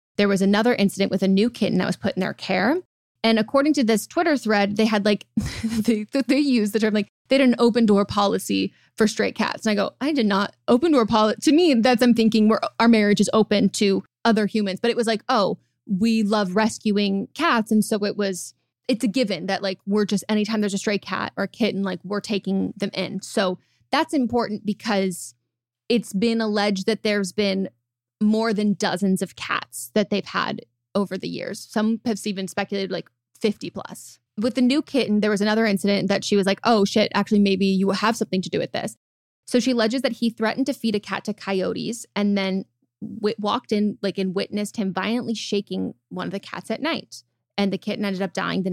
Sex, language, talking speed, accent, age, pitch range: female, English, 220 wpm, American, 20-39, 195-225 Hz